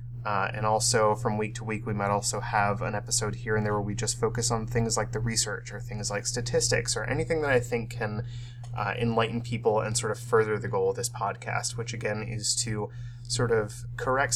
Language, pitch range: English, 110-155 Hz